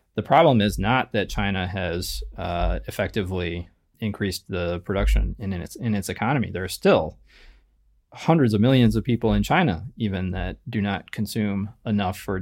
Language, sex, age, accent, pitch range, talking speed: English, male, 20-39, American, 95-120 Hz, 175 wpm